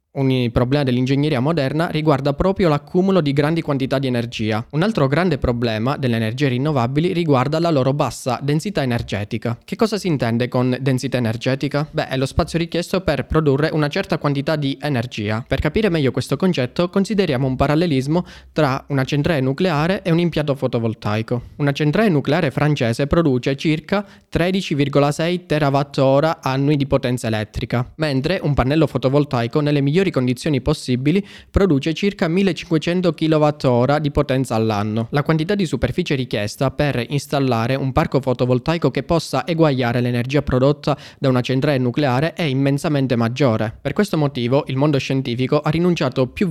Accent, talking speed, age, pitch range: native, 150 wpm, 20-39, 130-160 Hz